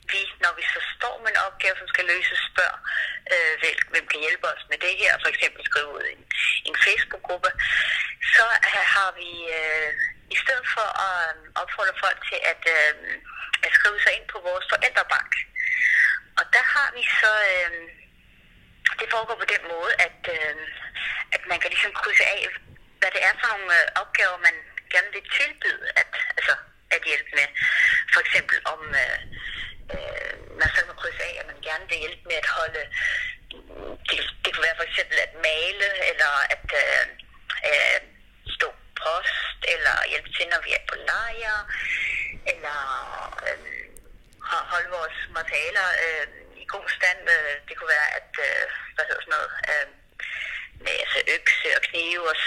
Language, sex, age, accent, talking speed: Danish, female, 30-49, native, 165 wpm